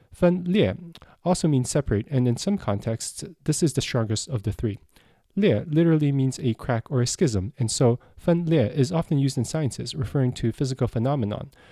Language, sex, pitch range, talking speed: English, male, 115-160 Hz, 180 wpm